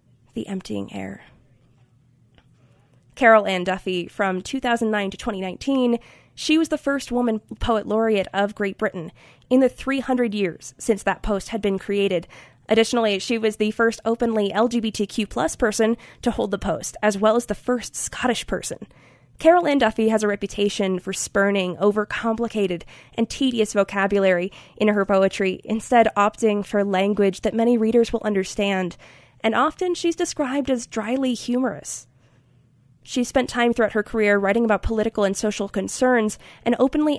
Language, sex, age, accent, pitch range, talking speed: English, female, 20-39, American, 195-235 Hz, 150 wpm